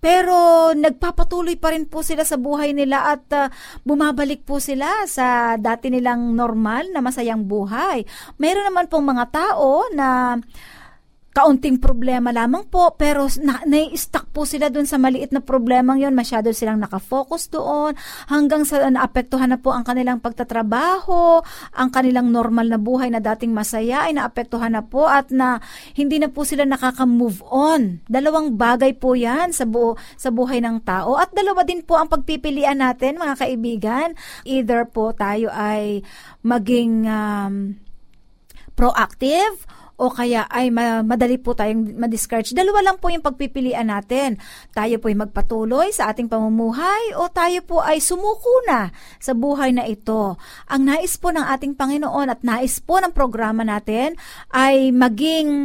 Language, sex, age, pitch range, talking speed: Filipino, female, 50-69, 230-295 Hz, 155 wpm